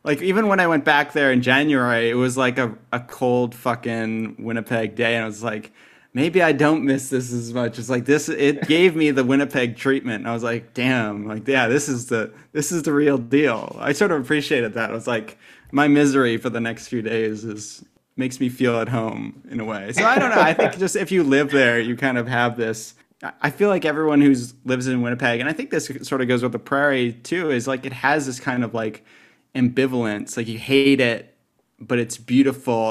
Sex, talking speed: male, 235 wpm